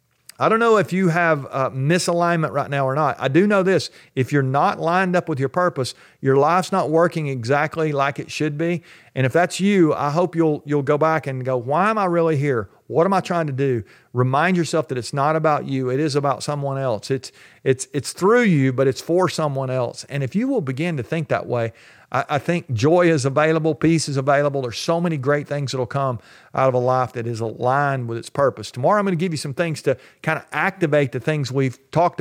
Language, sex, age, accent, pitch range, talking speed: English, male, 50-69, American, 130-170 Hz, 240 wpm